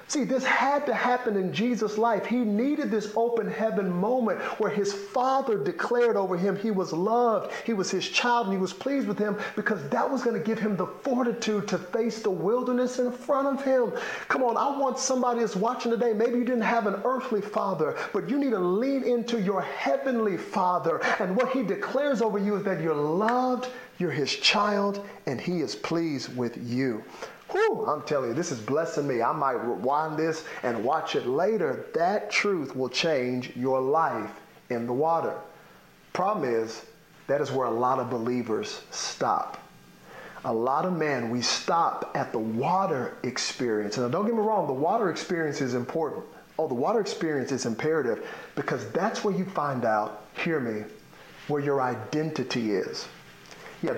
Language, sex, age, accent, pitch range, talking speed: English, male, 40-59, American, 145-240 Hz, 185 wpm